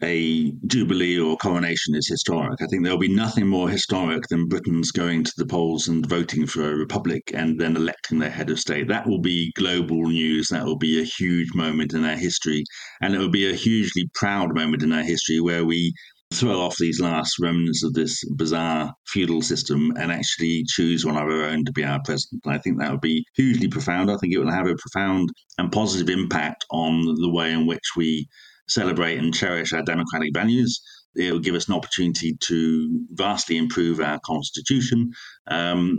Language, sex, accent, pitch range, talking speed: English, male, British, 80-90 Hz, 200 wpm